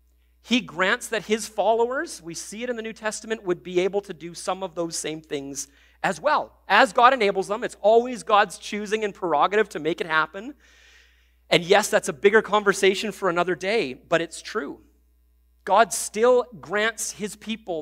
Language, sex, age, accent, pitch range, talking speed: English, male, 40-59, American, 130-205 Hz, 185 wpm